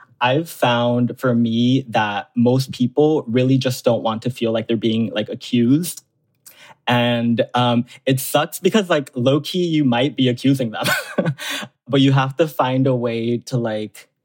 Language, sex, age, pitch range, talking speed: English, male, 20-39, 115-140 Hz, 170 wpm